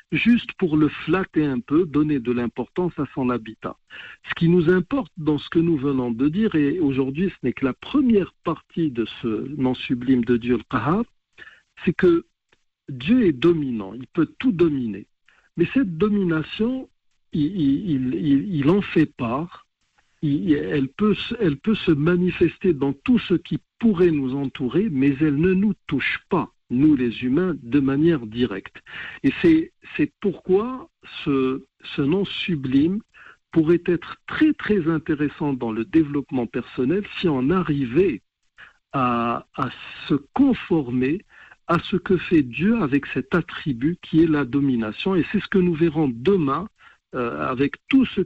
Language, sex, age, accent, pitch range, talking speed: French, male, 60-79, French, 135-185 Hz, 160 wpm